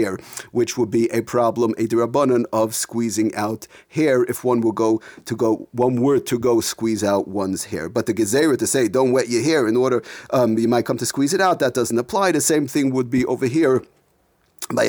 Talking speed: 200 wpm